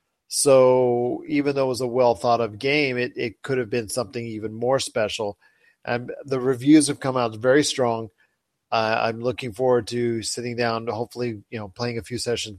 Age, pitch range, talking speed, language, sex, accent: 40-59, 115-130 Hz, 190 wpm, English, male, American